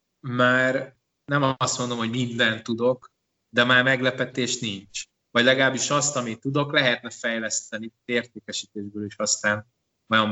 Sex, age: male, 20-39